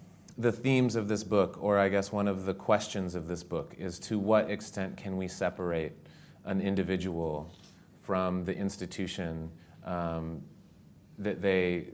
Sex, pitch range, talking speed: male, 85-95 Hz, 150 wpm